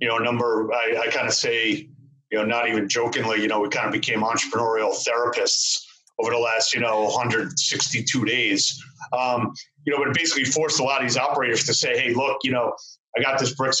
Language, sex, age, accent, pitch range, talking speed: English, male, 40-59, American, 120-145 Hz, 220 wpm